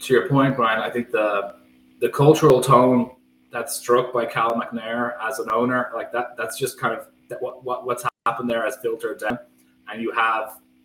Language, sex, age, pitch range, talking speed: English, male, 20-39, 90-125 Hz, 195 wpm